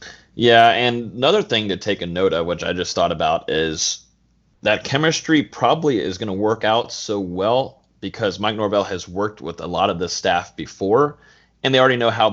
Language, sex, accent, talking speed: English, male, American, 205 wpm